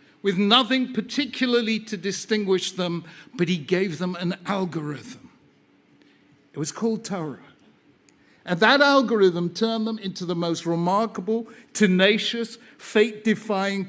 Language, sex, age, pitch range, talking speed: Hebrew, male, 60-79, 170-220 Hz, 115 wpm